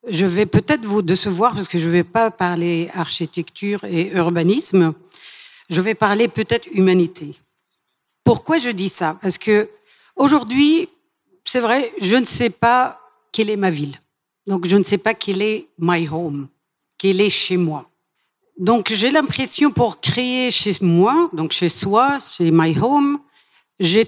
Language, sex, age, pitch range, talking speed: English, female, 50-69, 180-240 Hz, 155 wpm